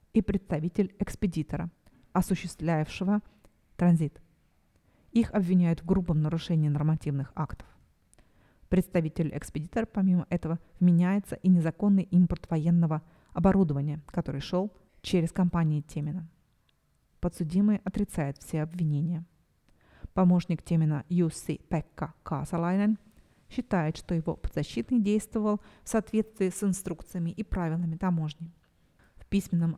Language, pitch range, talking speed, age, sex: Russian, 160-195 Hz, 100 wpm, 30-49, female